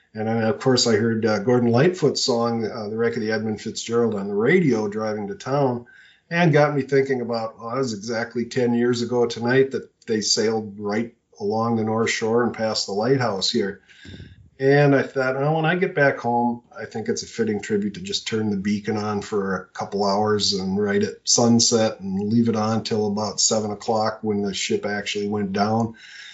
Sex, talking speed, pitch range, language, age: male, 210 wpm, 110-140 Hz, English, 40-59